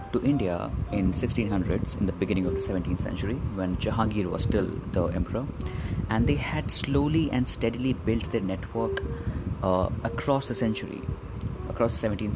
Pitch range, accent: 95-115 Hz, Indian